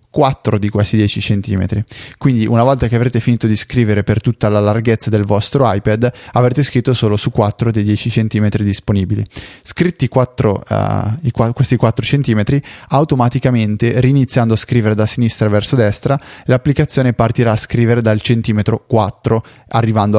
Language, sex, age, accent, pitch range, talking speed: Italian, male, 20-39, native, 110-125 Hz, 150 wpm